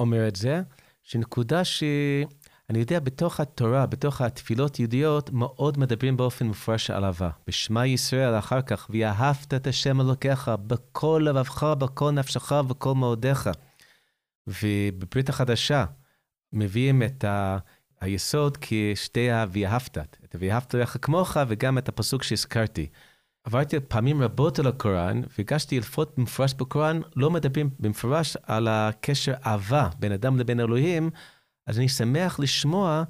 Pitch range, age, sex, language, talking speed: 110-145 Hz, 30-49, male, Hebrew, 130 wpm